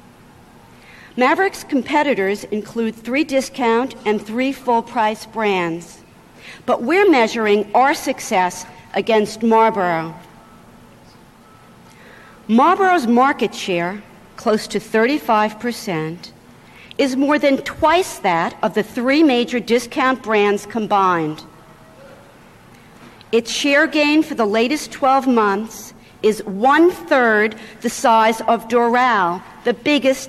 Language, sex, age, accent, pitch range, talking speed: English, female, 60-79, American, 210-275 Hz, 100 wpm